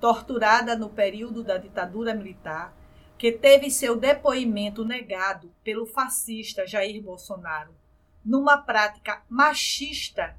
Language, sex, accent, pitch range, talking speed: Portuguese, female, Brazilian, 200-255 Hz, 105 wpm